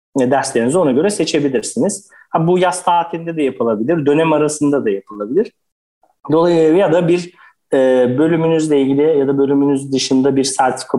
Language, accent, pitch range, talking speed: Turkish, native, 135-190 Hz, 150 wpm